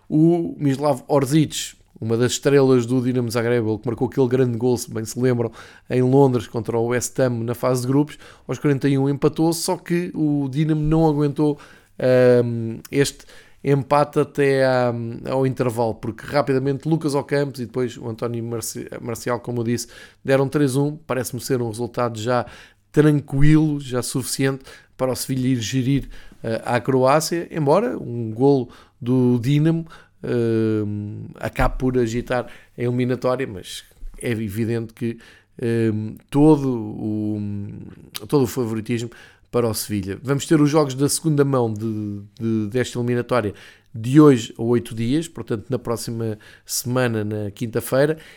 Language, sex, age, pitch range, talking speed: Portuguese, male, 20-39, 115-140 Hz, 150 wpm